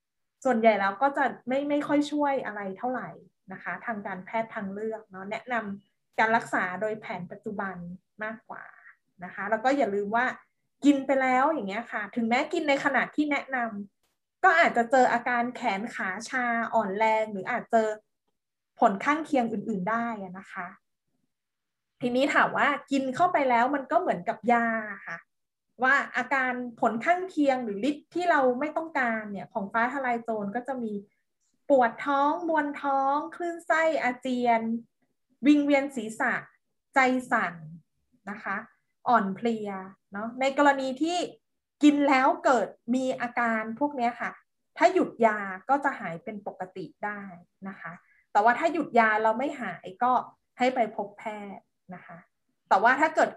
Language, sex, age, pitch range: Thai, female, 20-39, 215-275 Hz